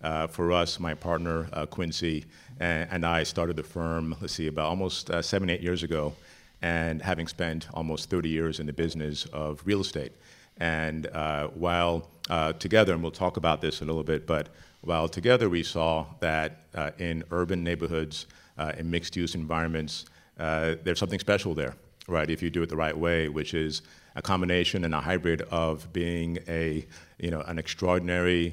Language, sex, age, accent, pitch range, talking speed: English, male, 50-69, American, 80-90 Hz, 185 wpm